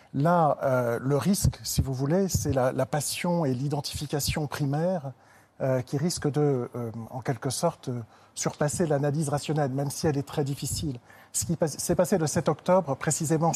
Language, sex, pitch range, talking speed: French, male, 135-165 Hz, 175 wpm